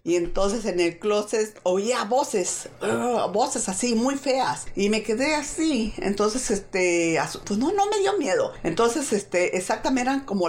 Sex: female